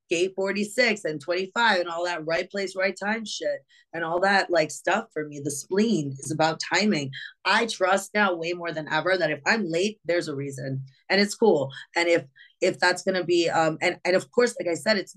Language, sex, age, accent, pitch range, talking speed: English, female, 20-39, American, 145-190 Hz, 225 wpm